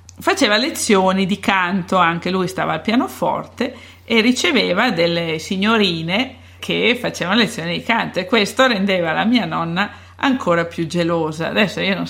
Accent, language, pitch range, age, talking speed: native, Italian, 170-220 Hz, 50-69, 150 wpm